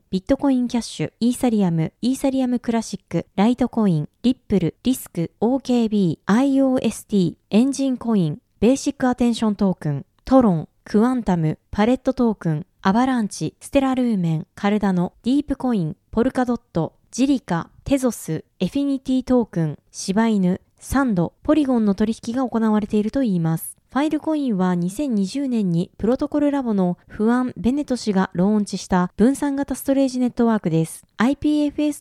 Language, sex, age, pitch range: Japanese, female, 20-39, 195-265 Hz